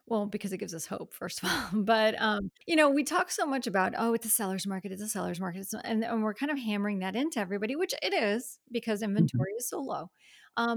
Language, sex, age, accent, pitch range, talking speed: English, female, 30-49, American, 190-235 Hz, 255 wpm